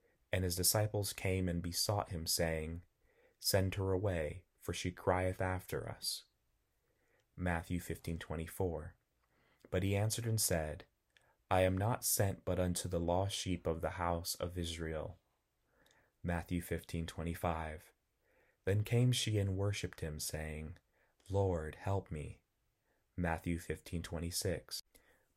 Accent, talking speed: American, 120 wpm